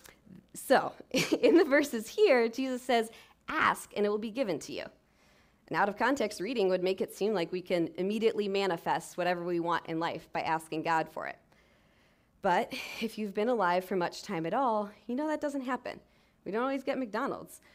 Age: 20-39